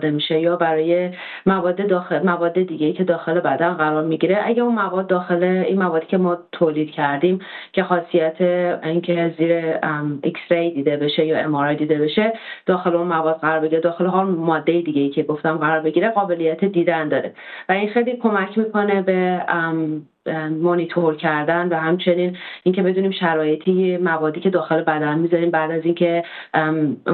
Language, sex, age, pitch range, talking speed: Persian, female, 30-49, 160-180 Hz, 155 wpm